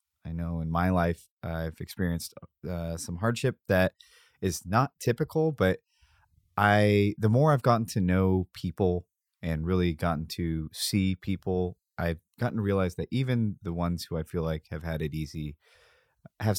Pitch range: 85-105 Hz